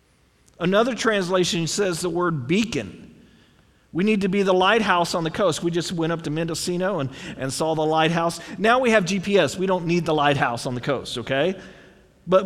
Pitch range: 140-200 Hz